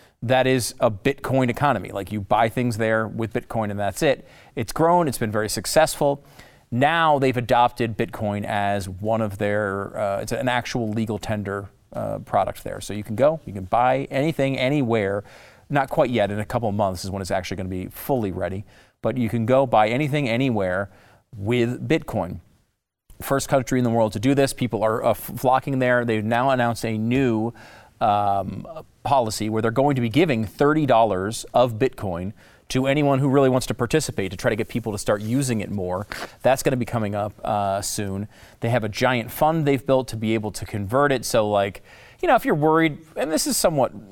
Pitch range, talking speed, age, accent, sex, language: 105-130 Hz, 205 wpm, 40-59, American, male, English